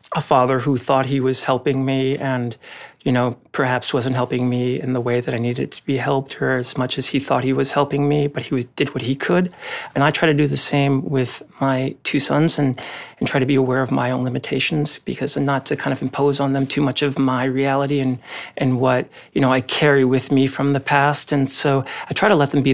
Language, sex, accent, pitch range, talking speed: English, male, American, 130-145 Hz, 250 wpm